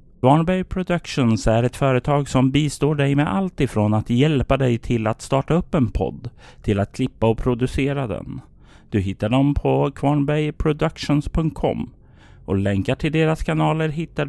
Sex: male